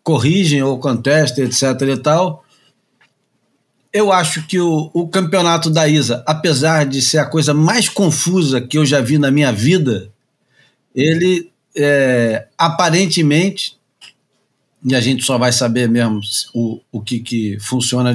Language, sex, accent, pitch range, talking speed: Portuguese, male, Brazilian, 125-160 Hz, 140 wpm